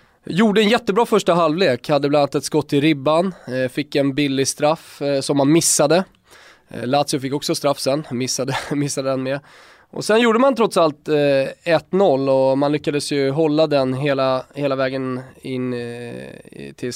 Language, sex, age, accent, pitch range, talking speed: English, male, 20-39, Swedish, 130-165 Hz, 165 wpm